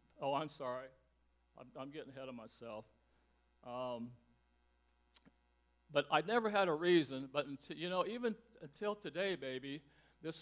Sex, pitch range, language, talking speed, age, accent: male, 115-160 Hz, English, 140 wpm, 60-79, American